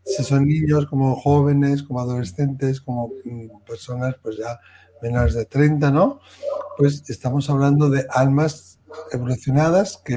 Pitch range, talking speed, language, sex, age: 125-160 Hz, 130 wpm, Spanish, male, 60-79